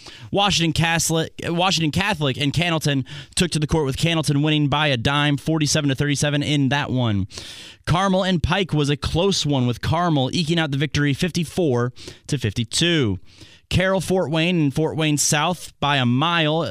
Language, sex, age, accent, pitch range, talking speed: English, male, 20-39, American, 140-170 Hz, 155 wpm